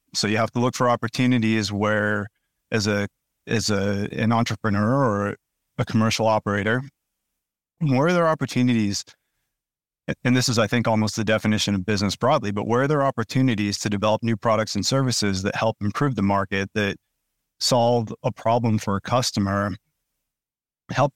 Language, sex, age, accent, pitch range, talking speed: English, male, 30-49, American, 100-120 Hz, 160 wpm